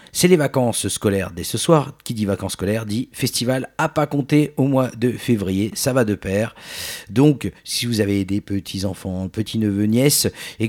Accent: French